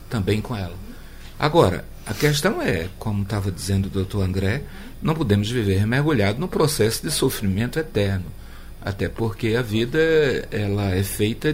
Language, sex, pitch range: Portuguese, male, 95-130 Hz